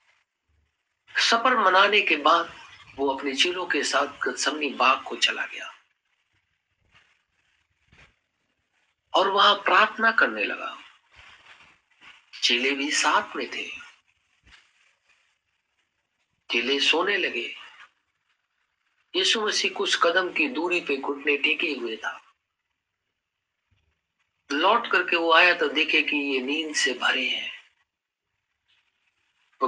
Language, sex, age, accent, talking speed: Hindi, male, 50-69, native, 100 wpm